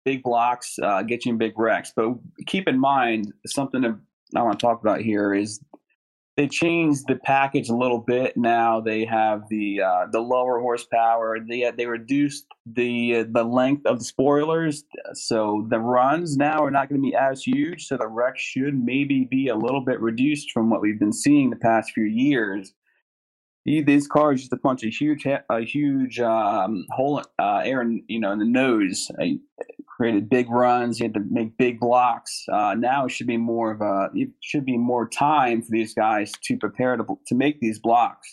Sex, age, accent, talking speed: male, 30-49, American, 200 wpm